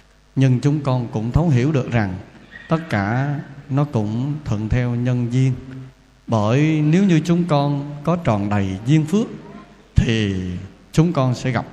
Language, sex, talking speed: Vietnamese, male, 160 wpm